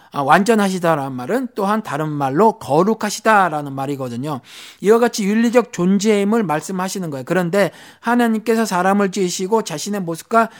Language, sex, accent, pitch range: Korean, male, native, 170-230 Hz